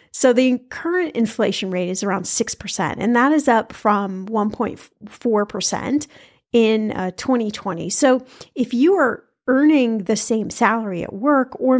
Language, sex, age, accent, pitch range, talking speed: English, female, 30-49, American, 210-265 Hz, 135 wpm